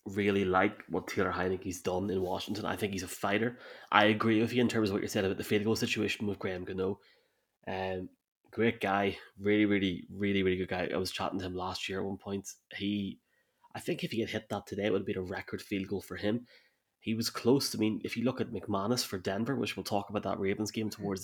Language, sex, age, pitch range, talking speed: English, male, 20-39, 95-110 Hz, 255 wpm